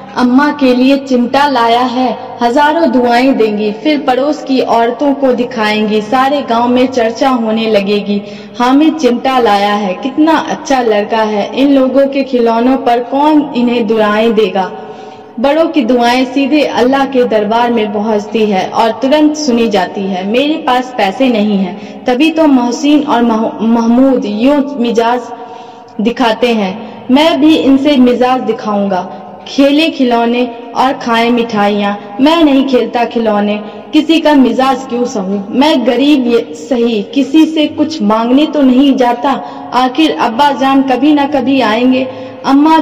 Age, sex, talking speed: 20-39, female, 145 wpm